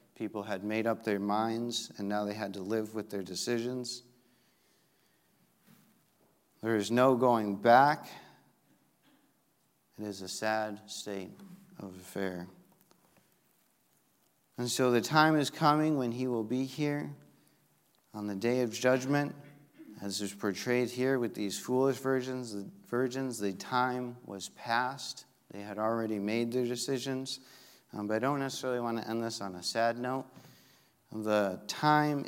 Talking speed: 145 wpm